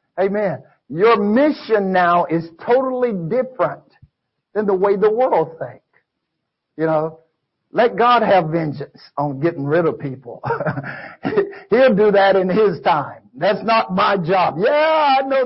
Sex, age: male, 60-79